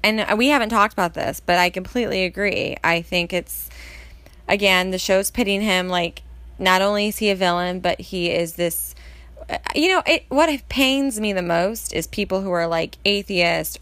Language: English